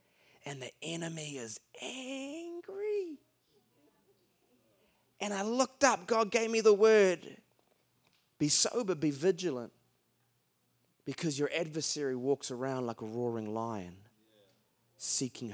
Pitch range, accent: 120-165 Hz, Australian